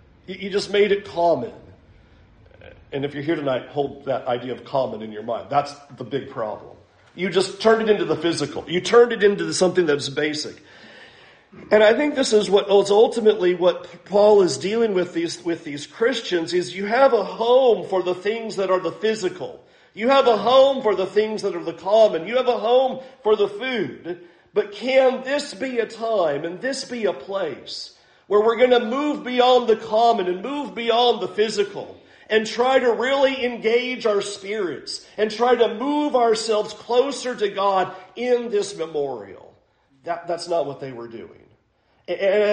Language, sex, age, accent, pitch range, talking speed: English, male, 50-69, American, 175-240 Hz, 185 wpm